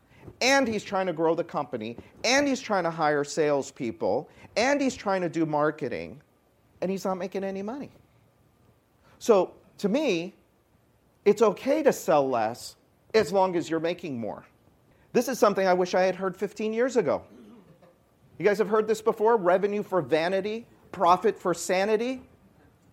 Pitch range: 160-225 Hz